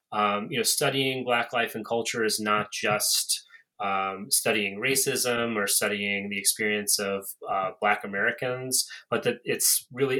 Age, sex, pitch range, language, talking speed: 30-49, male, 105-145 Hz, English, 155 wpm